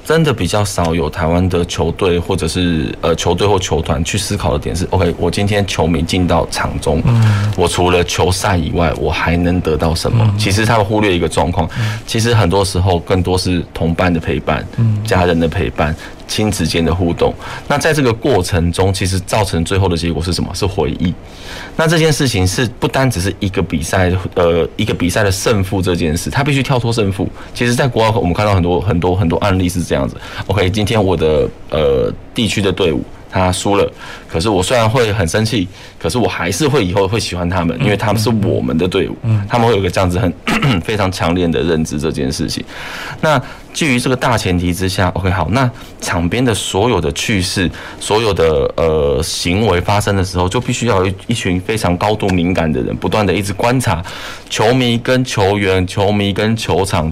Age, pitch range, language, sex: 20-39, 85-110 Hz, Chinese, male